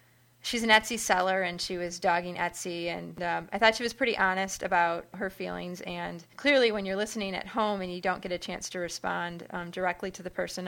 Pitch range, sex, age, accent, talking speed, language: 180-220 Hz, female, 30-49, American, 225 wpm, English